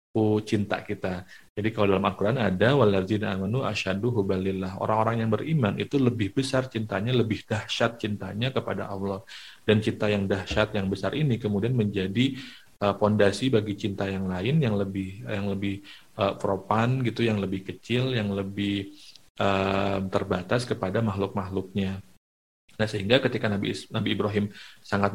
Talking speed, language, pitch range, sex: 145 wpm, Indonesian, 100-115 Hz, male